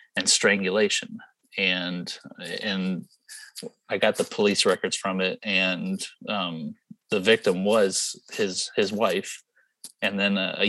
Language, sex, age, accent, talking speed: English, male, 30-49, American, 130 wpm